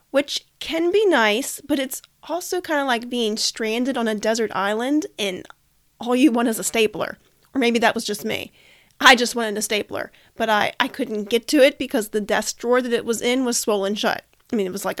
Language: English